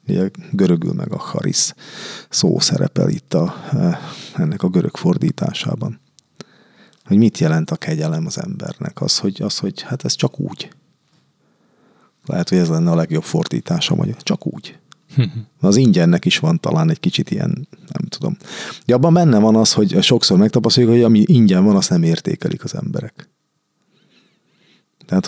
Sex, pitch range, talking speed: male, 110-175 Hz, 155 wpm